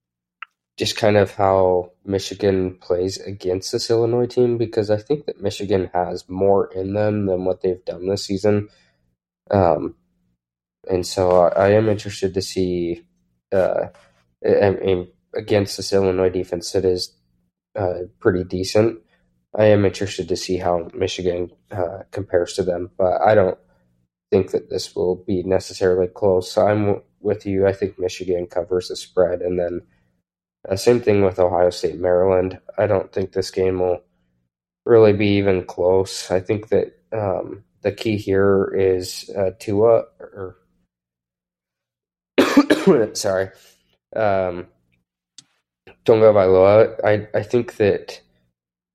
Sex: male